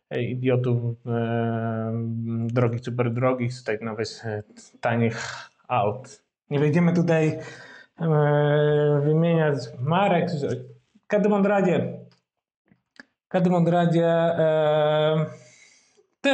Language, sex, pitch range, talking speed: Polish, male, 120-160 Hz, 75 wpm